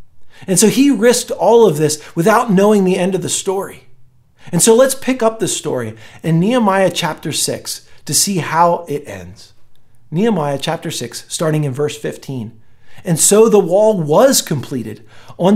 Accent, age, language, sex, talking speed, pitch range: American, 40-59, English, male, 170 wpm, 145-230 Hz